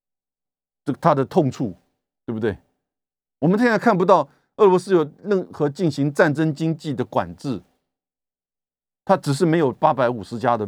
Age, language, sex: 50-69, Chinese, male